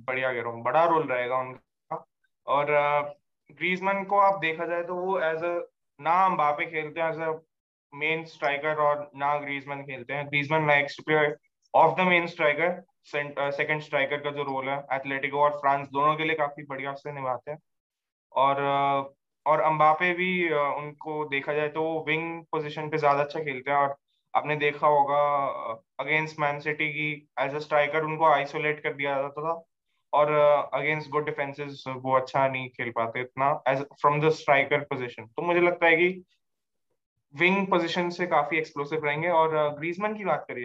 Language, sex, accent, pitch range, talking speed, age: Hindi, male, native, 140-155 Hz, 170 wpm, 20-39